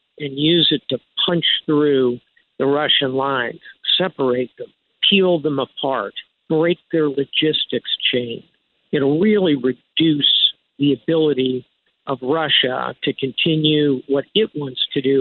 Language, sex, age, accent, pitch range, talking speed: English, male, 50-69, American, 135-160 Hz, 125 wpm